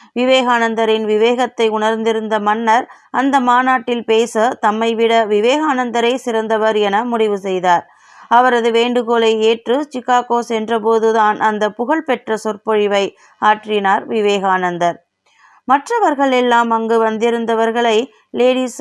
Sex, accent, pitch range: female, native, 215-245 Hz